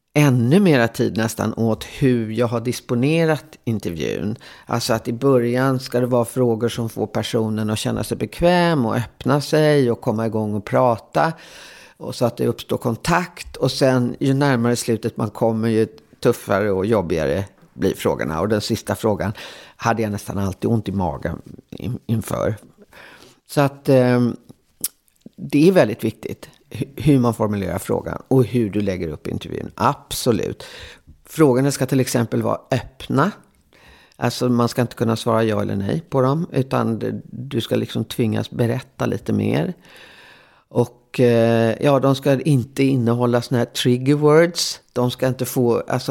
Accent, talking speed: Swedish, 160 wpm